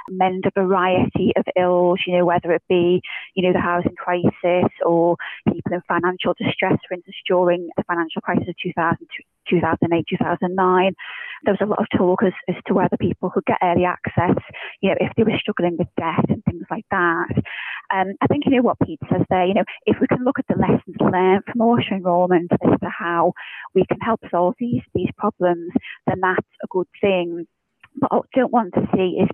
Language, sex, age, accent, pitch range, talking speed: English, female, 20-39, British, 175-210 Hz, 210 wpm